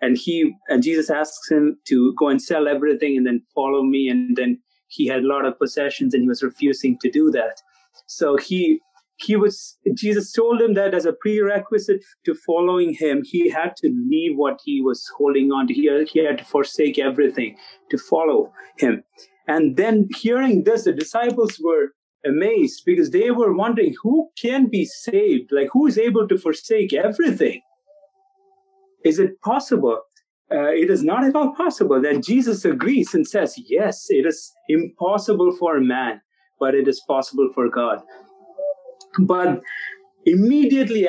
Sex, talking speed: male, 170 wpm